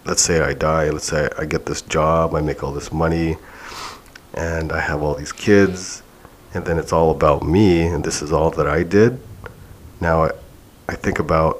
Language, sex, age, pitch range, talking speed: English, male, 30-49, 80-100 Hz, 200 wpm